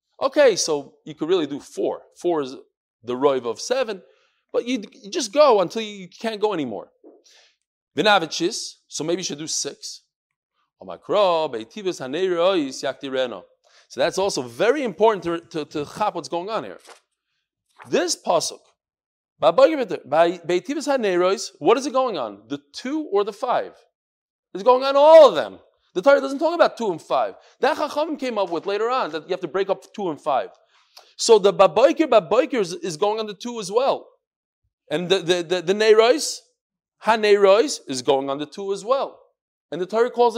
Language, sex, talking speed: English, male, 170 wpm